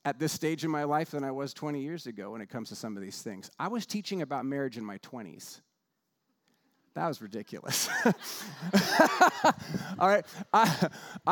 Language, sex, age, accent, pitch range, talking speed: English, male, 30-49, American, 140-180 Hz, 175 wpm